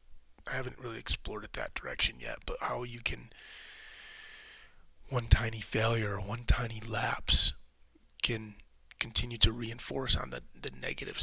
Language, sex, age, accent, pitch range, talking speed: English, male, 30-49, American, 70-120 Hz, 145 wpm